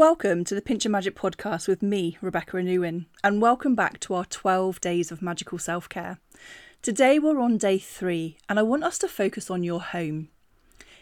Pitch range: 180-245 Hz